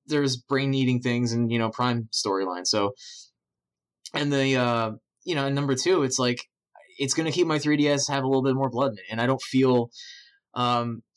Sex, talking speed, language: male, 200 wpm, English